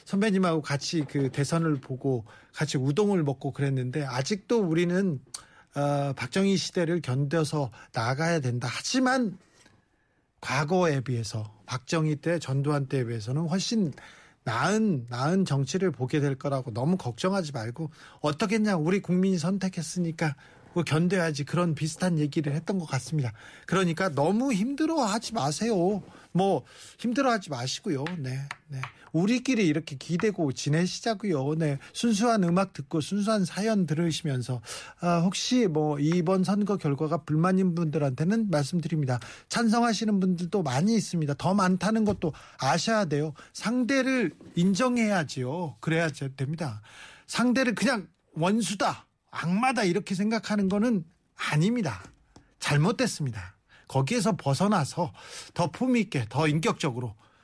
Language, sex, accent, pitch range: Korean, male, native, 140-195 Hz